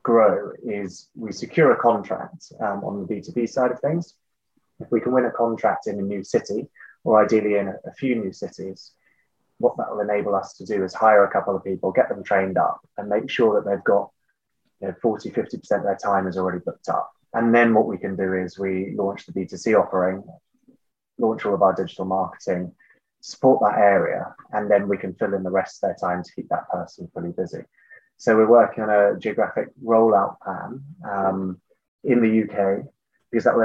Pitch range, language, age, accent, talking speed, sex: 95-110 Hz, English, 20-39, British, 210 wpm, male